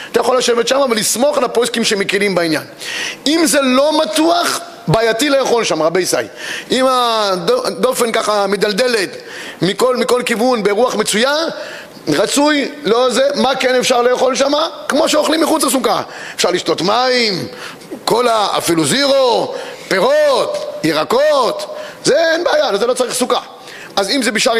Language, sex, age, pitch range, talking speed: Hebrew, male, 30-49, 195-275 Hz, 140 wpm